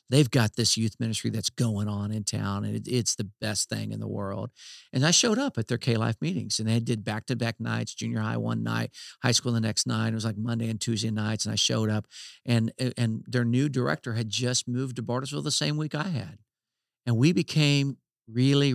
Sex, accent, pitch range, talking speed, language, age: male, American, 110-130 Hz, 225 wpm, English, 50-69